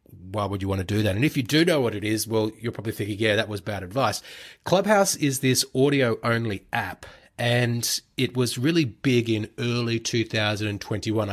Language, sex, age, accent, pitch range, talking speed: English, male, 30-49, Australian, 100-115 Hz, 195 wpm